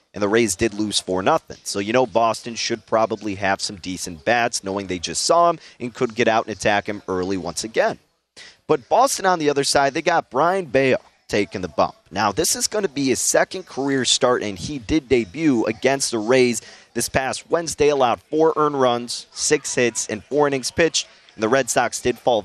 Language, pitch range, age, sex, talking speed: English, 110-145 Hz, 30-49, male, 215 wpm